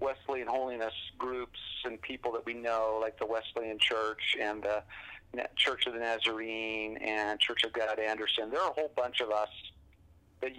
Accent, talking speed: American, 175 wpm